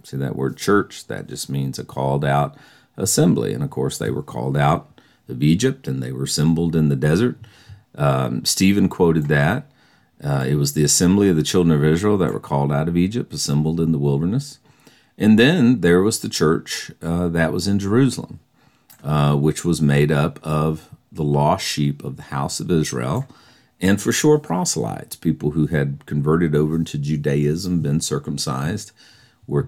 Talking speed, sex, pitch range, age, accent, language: 180 wpm, male, 75-95 Hz, 50-69, American, English